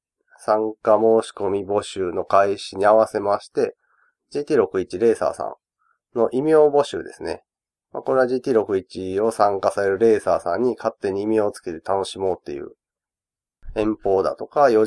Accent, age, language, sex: native, 30-49, Japanese, male